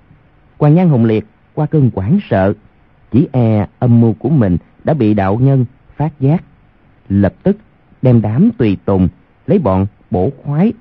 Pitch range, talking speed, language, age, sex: 105-150 Hz, 165 wpm, Vietnamese, 30-49, male